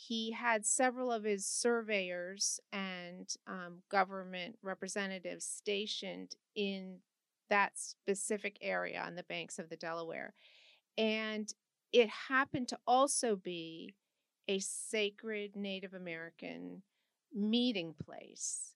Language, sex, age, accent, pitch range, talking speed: English, female, 40-59, American, 185-225 Hz, 105 wpm